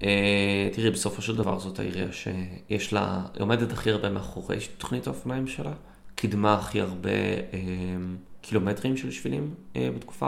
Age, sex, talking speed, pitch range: 20-39, male, 145 wpm, 95-110 Hz